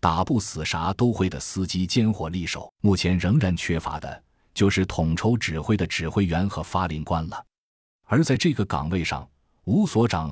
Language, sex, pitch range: Chinese, male, 80-110 Hz